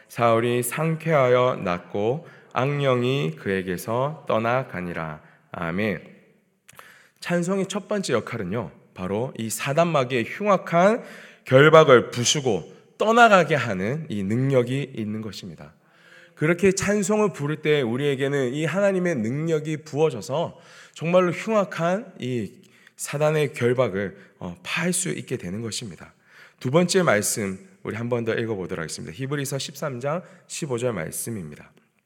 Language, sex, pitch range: Korean, male, 115-165 Hz